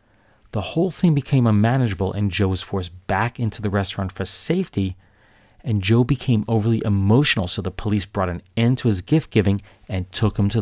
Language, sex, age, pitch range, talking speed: English, male, 40-59, 95-115 Hz, 190 wpm